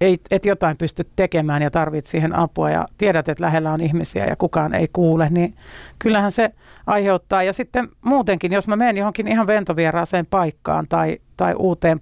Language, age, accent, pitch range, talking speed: Finnish, 50-69, native, 160-190 Hz, 180 wpm